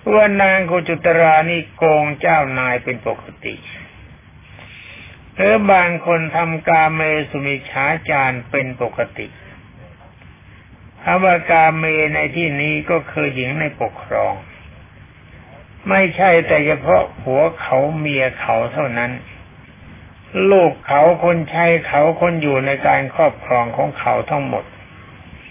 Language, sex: Thai, male